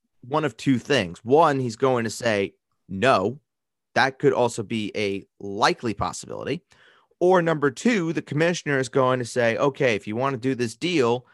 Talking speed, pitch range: 180 wpm, 105-150 Hz